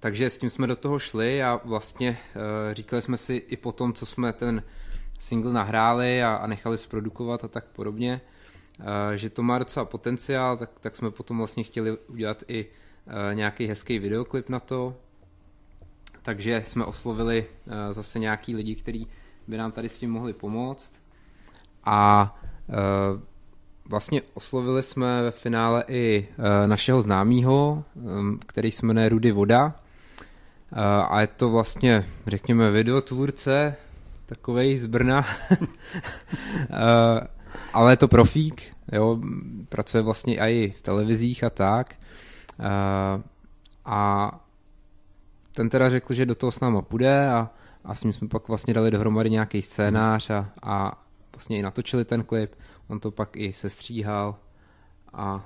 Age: 20-39